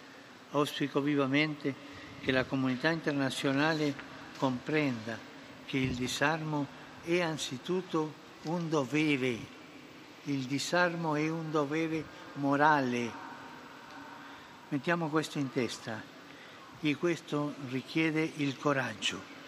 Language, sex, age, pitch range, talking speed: English, male, 60-79, 130-155 Hz, 90 wpm